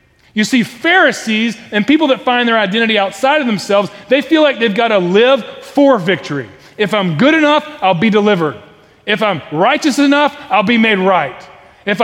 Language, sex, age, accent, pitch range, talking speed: English, male, 30-49, American, 210-295 Hz, 185 wpm